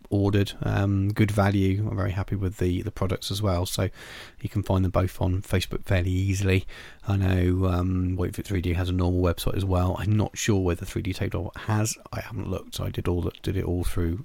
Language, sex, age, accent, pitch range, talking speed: English, male, 40-59, British, 100-125 Hz, 225 wpm